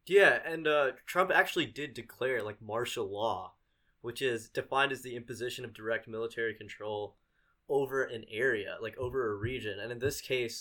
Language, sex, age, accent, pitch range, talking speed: English, male, 20-39, American, 115-140 Hz, 175 wpm